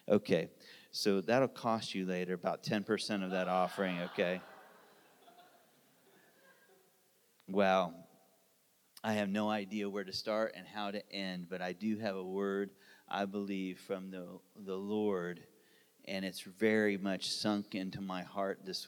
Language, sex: English, male